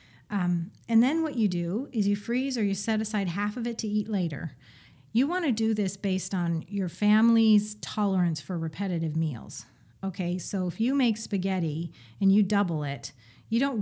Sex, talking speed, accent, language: female, 190 wpm, American, English